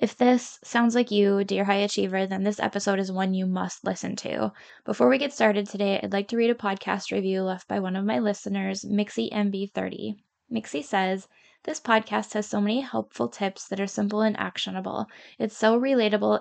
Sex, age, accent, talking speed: female, 10-29, American, 200 wpm